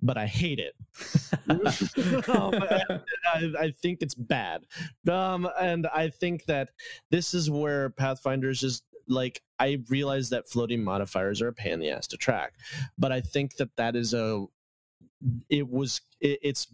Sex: male